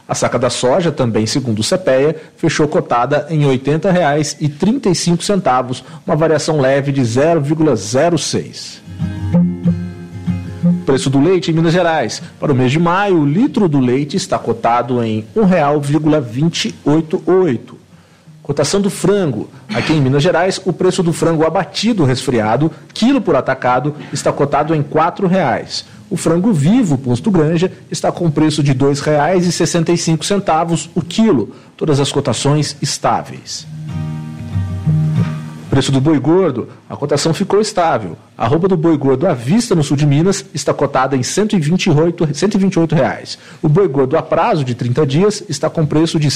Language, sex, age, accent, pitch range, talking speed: English, male, 40-59, Brazilian, 135-175 Hz, 150 wpm